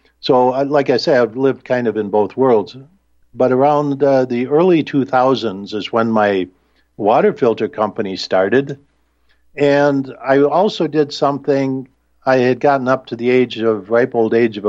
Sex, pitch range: male, 110-135 Hz